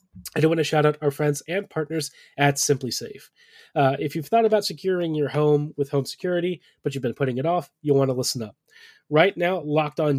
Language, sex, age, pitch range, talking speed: English, male, 30-49, 135-160 Hz, 230 wpm